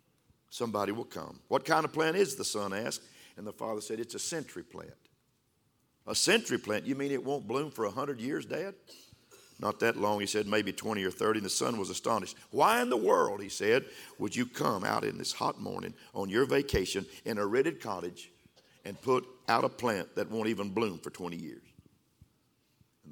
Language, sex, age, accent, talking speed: English, male, 50-69, American, 205 wpm